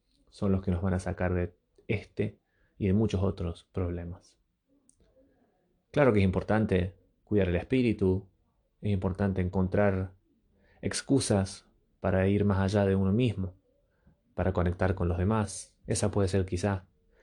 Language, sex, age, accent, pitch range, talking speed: Spanish, male, 20-39, Argentinian, 90-100 Hz, 145 wpm